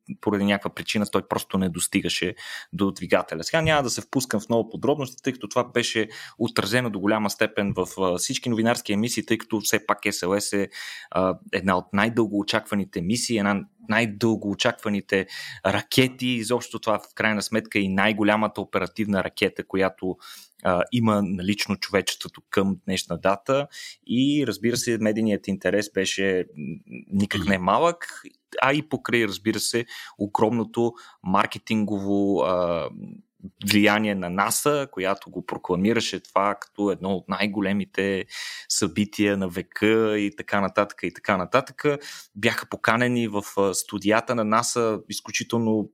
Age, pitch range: 30-49, 100-120 Hz